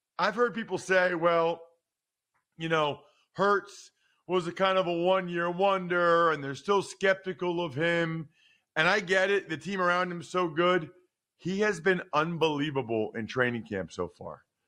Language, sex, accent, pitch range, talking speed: English, male, American, 155-185 Hz, 170 wpm